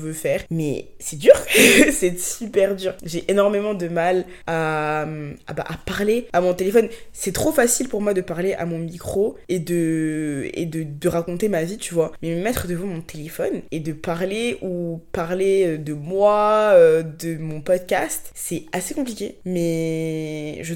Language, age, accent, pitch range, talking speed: French, 20-39, French, 165-210 Hz, 175 wpm